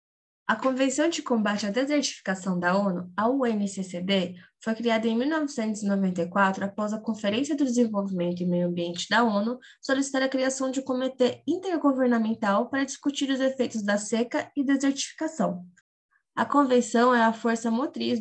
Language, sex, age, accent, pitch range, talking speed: Portuguese, female, 20-39, Brazilian, 200-265 Hz, 150 wpm